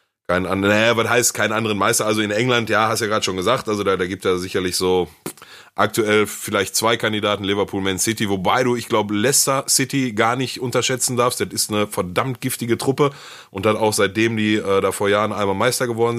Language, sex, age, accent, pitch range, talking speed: German, male, 30-49, German, 90-115 Hz, 220 wpm